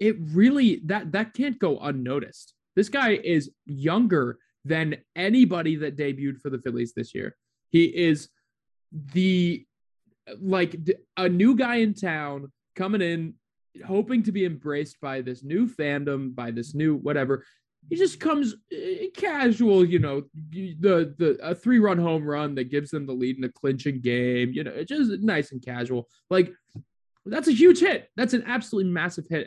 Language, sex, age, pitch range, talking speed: English, male, 20-39, 135-200 Hz, 165 wpm